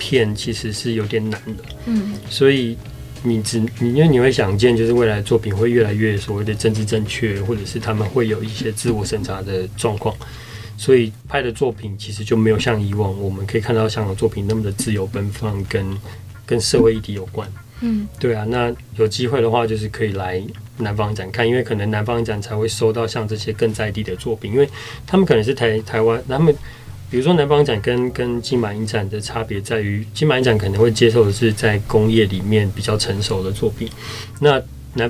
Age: 20-39